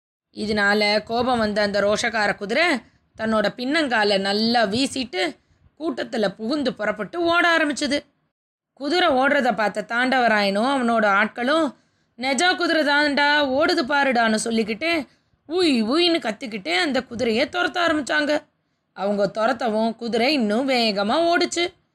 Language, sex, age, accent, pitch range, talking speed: Tamil, female, 20-39, native, 220-315 Hz, 110 wpm